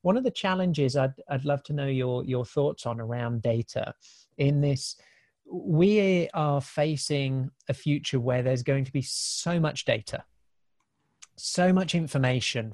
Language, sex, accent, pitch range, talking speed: English, male, British, 130-155 Hz, 155 wpm